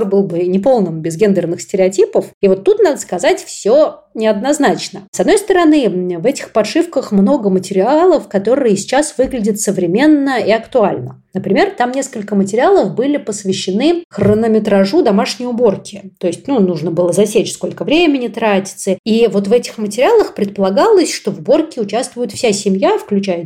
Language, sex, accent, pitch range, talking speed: Russian, female, native, 190-245 Hz, 150 wpm